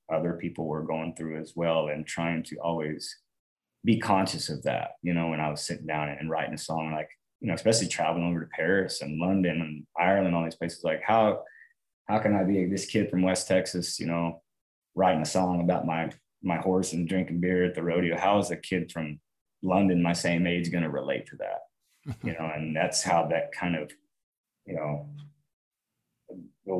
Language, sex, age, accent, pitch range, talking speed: English, male, 20-39, American, 85-95 Hz, 205 wpm